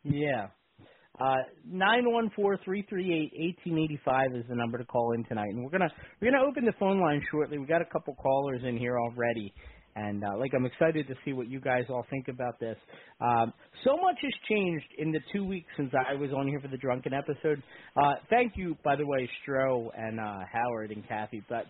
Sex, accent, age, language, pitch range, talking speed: male, American, 40-59, English, 120-175 Hz, 205 wpm